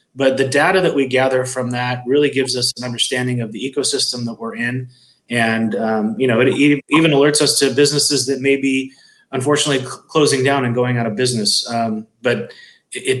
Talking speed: 195 wpm